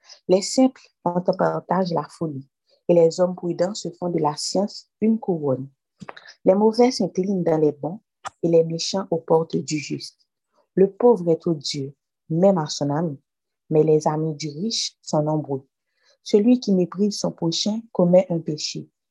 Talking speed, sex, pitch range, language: 165 wpm, female, 155-190 Hz, French